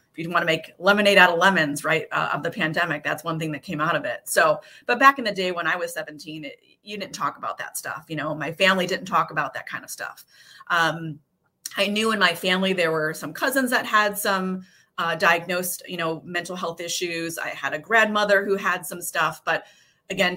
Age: 30-49